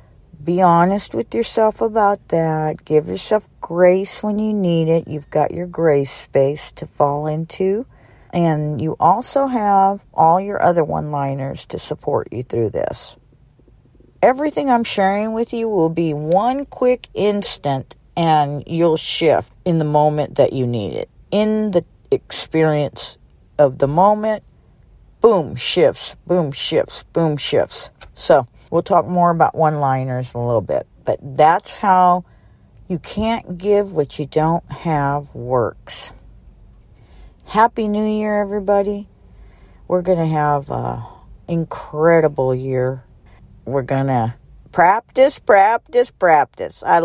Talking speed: 135 wpm